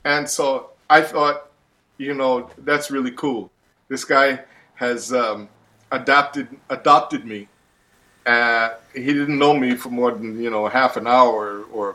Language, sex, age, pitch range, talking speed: English, male, 50-69, 115-145 Hz, 150 wpm